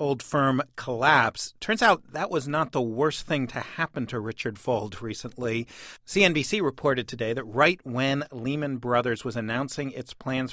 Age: 50-69